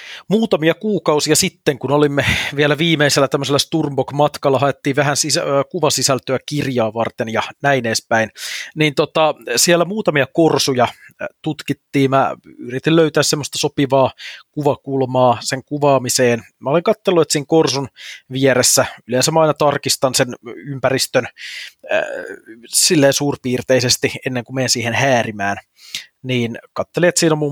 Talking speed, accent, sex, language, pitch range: 125 wpm, native, male, Finnish, 125-150 Hz